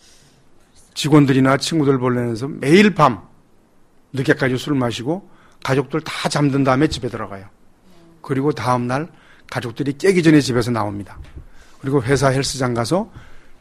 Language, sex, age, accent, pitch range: Korean, male, 40-59, native, 125-175 Hz